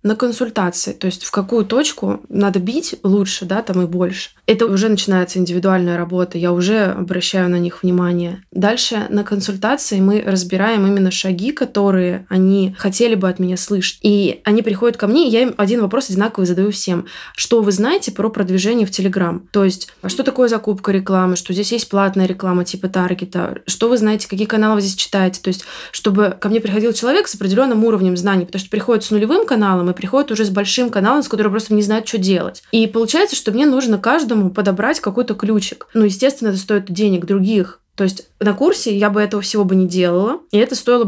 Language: Russian